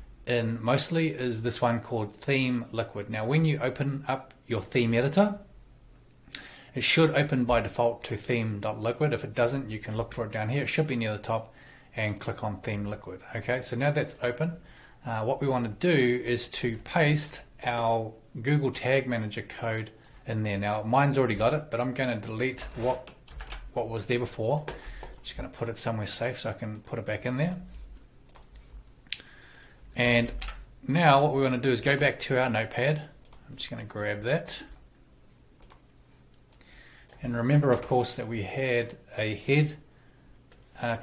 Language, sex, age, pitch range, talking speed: English, male, 30-49, 115-135 Hz, 185 wpm